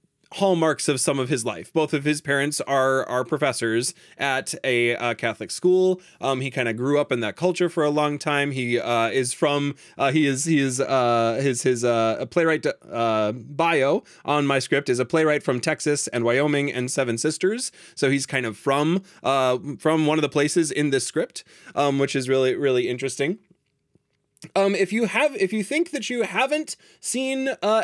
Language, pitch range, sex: English, 125-165 Hz, male